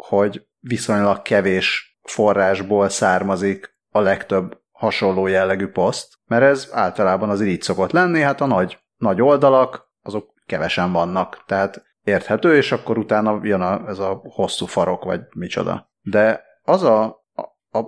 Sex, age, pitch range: male, 30-49, 100-125 Hz